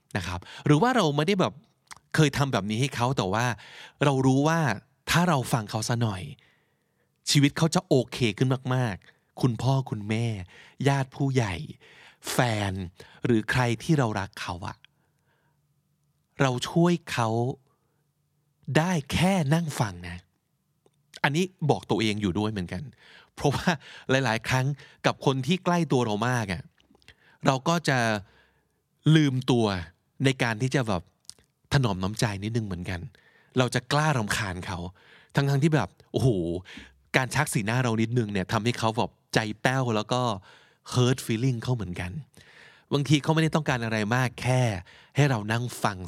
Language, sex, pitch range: Thai, male, 110-150 Hz